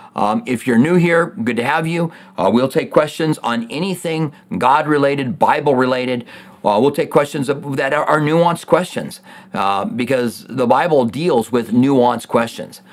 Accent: American